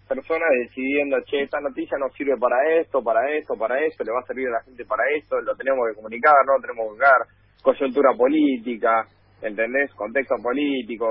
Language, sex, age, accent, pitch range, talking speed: Spanish, male, 30-49, Argentinian, 120-165 Hz, 190 wpm